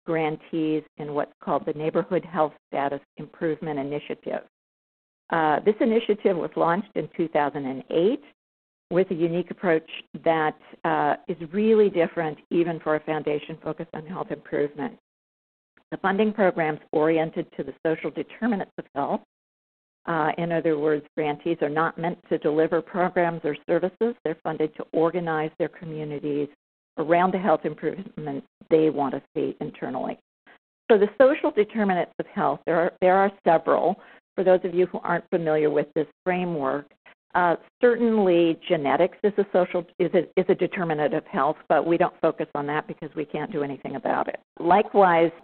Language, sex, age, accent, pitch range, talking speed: English, female, 50-69, American, 155-180 Hz, 160 wpm